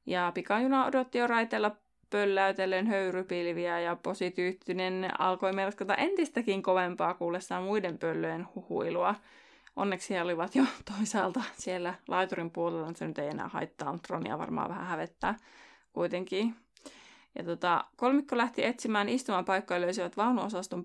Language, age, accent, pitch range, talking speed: Finnish, 20-39, native, 180-240 Hz, 125 wpm